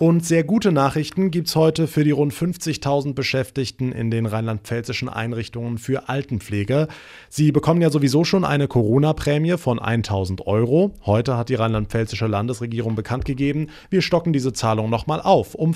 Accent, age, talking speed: German, 30-49, 160 wpm